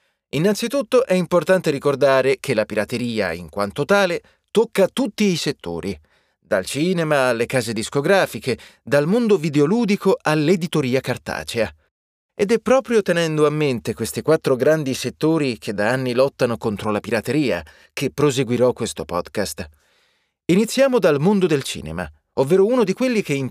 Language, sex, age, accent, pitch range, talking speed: Italian, male, 30-49, native, 115-180 Hz, 145 wpm